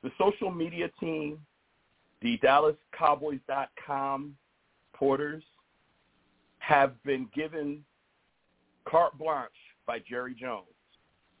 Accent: American